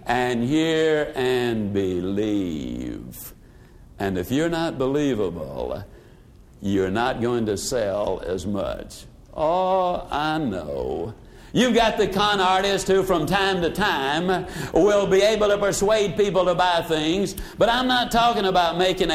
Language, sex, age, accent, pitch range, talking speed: English, male, 60-79, American, 155-205 Hz, 140 wpm